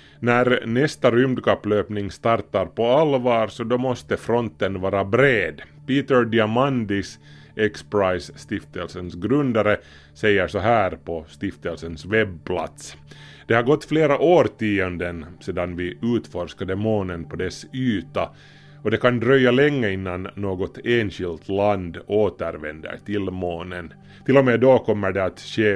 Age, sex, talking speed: 30-49, male, 125 wpm